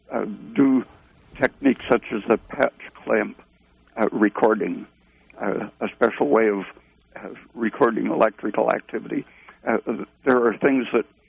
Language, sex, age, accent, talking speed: English, male, 60-79, American, 115 wpm